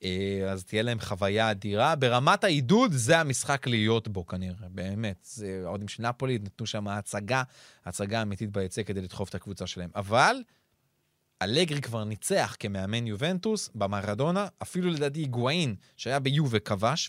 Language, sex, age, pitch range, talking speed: Hebrew, male, 30-49, 110-155 Hz, 145 wpm